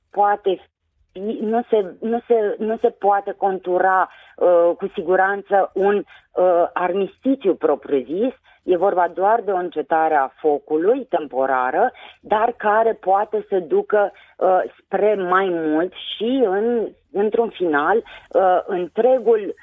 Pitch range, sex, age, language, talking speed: 170-220 Hz, female, 30-49, Romanian, 120 wpm